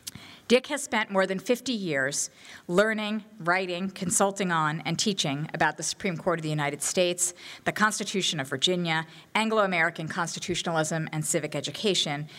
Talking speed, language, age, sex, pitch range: 145 wpm, English, 50-69, female, 160-200 Hz